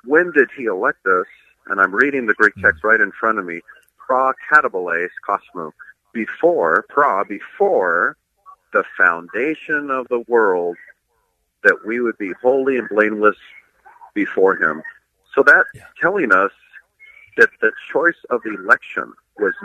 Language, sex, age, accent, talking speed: English, male, 50-69, American, 140 wpm